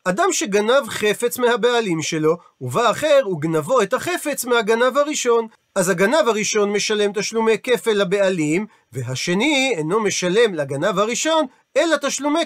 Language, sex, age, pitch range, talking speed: Hebrew, male, 40-59, 195-250 Hz, 125 wpm